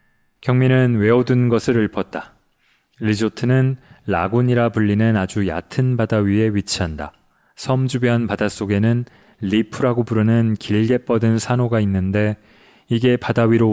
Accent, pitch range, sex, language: native, 105-125 Hz, male, Korean